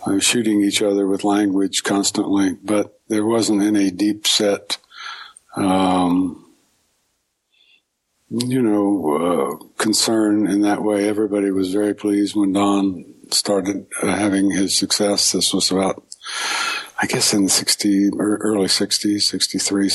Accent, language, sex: American, English, male